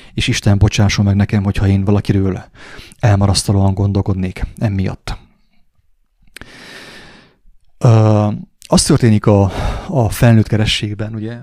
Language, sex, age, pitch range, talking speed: English, male, 30-49, 100-115 Hz, 95 wpm